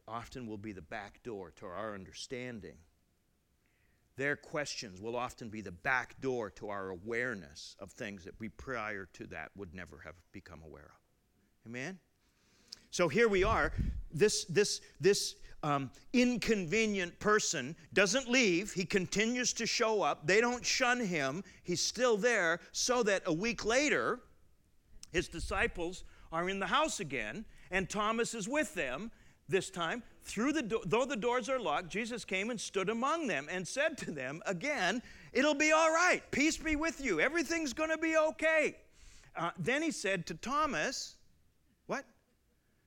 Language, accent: English, American